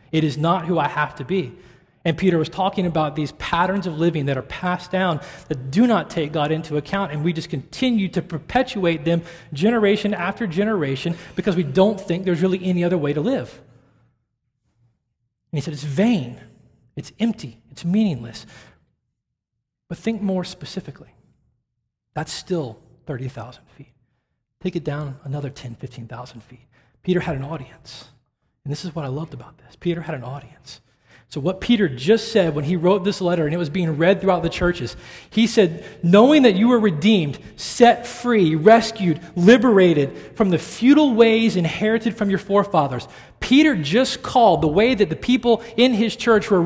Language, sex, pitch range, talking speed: English, male, 140-205 Hz, 175 wpm